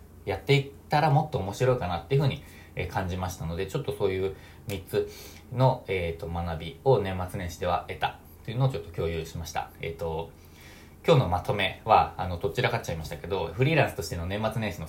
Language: Japanese